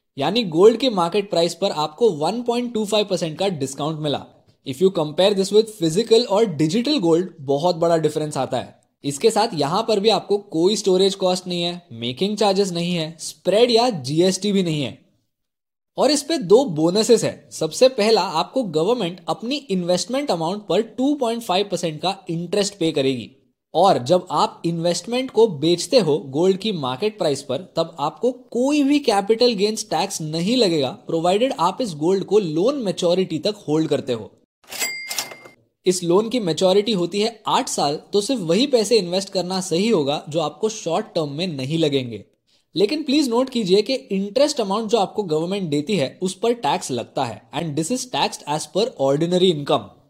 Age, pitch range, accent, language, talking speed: 20-39, 160-220 Hz, native, Hindi, 175 wpm